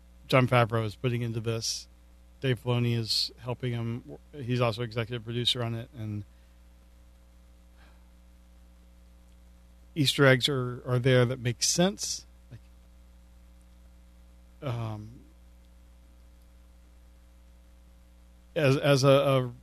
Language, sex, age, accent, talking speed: English, male, 40-59, American, 100 wpm